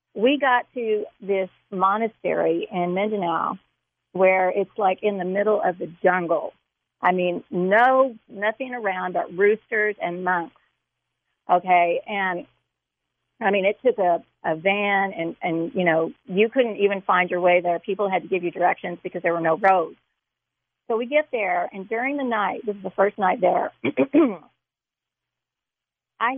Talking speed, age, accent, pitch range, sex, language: 160 wpm, 50-69, American, 185-230 Hz, female, English